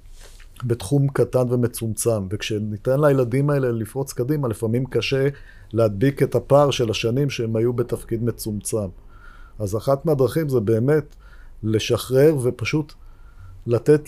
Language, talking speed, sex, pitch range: Hebrew, 115 wpm, male, 110-130 Hz